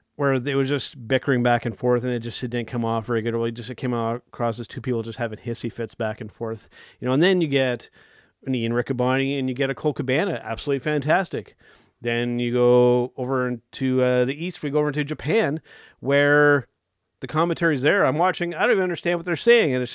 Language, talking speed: English, 225 wpm